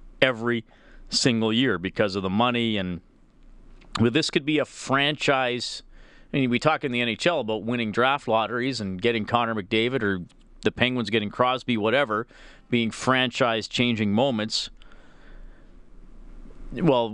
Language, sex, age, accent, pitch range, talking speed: English, male, 40-59, American, 110-135 Hz, 140 wpm